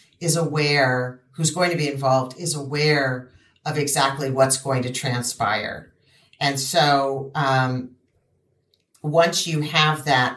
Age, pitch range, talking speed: 50-69, 135-155 Hz, 125 wpm